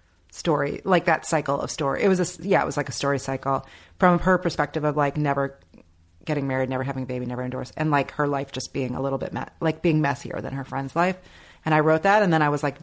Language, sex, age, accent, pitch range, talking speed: English, female, 30-49, American, 135-165 Hz, 260 wpm